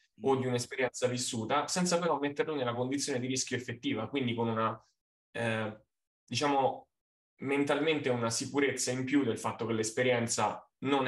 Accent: native